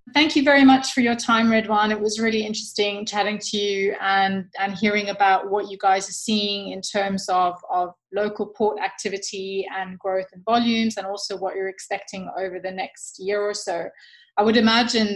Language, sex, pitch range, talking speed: English, female, 185-210 Hz, 195 wpm